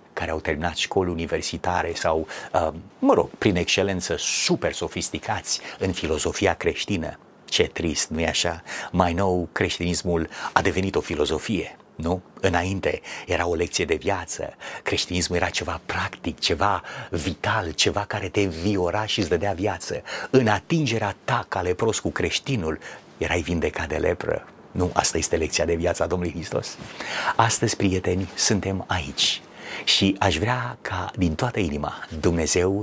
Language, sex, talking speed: Romanian, male, 145 wpm